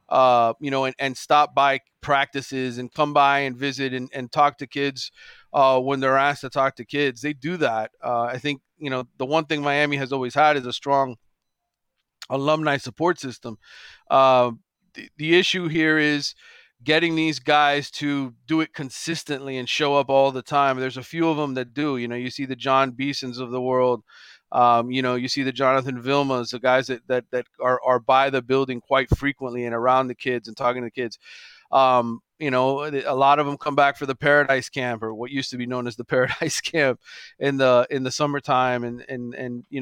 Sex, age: male, 40-59